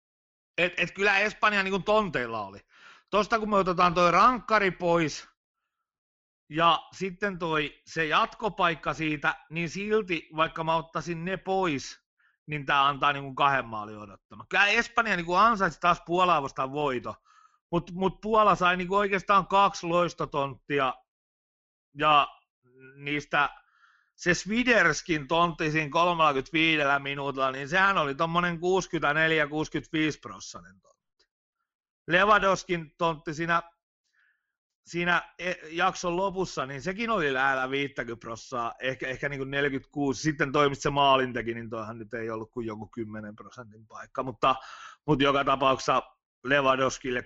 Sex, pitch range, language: male, 130-180 Hz, Finnish